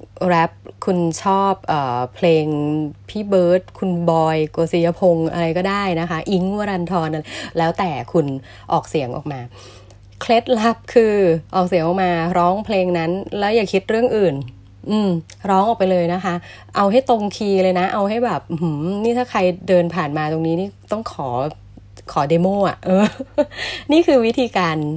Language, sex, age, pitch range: Thai, female, 20-39, 140-185 Hz